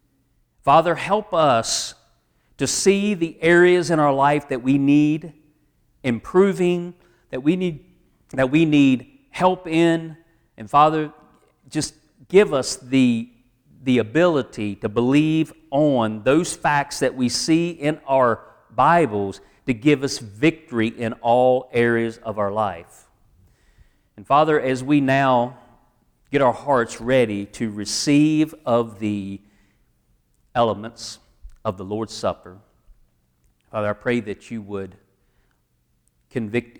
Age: 40-59